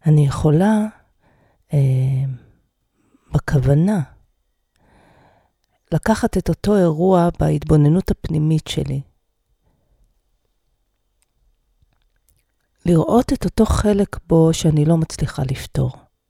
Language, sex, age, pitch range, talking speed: Hebrew, female, 40-59, 150-190 Hz, 75 wpm